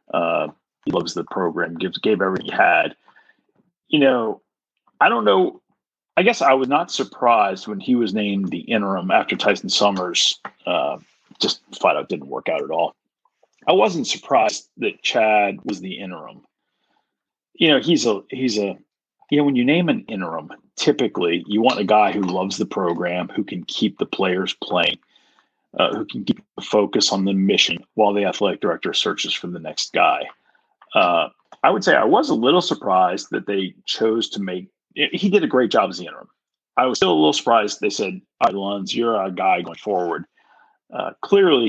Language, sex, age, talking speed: English, male, 40-59, 190 wpm